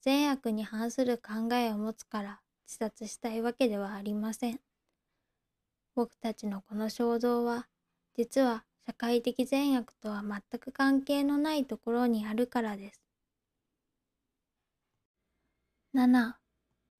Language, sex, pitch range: Japanese, female, 220-265 Hz